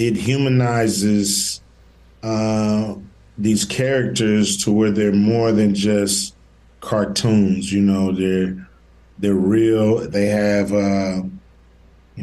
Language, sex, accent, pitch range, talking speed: English, male, American, 95-115 Hz, 105 wpm